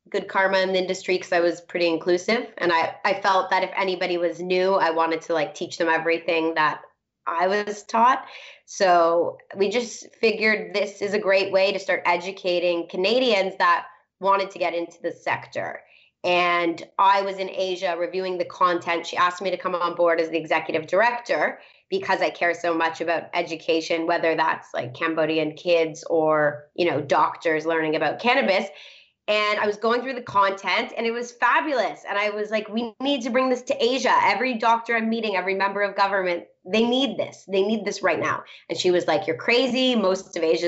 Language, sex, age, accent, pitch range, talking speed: English, female, 20-39, American, 170-205 Hz, 200 wpm